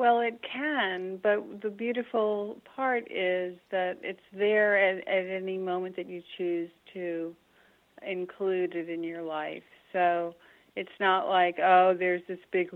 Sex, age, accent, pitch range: female, 40-59, American, 185-210 Hz